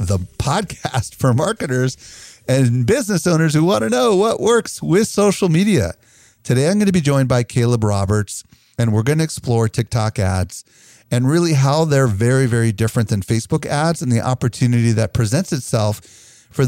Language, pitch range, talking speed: English, 100-135 Hz, 175 wpm